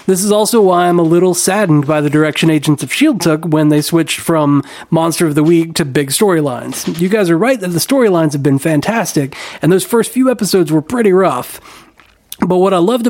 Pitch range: 150-190 Hz